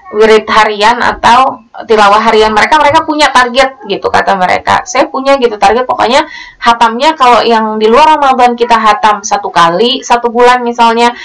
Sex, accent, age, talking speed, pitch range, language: female, native, 20-39, 160 wpm, 200-240 Hz, Indonesian